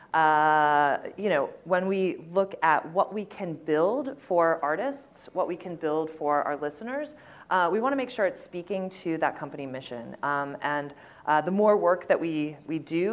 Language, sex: English, female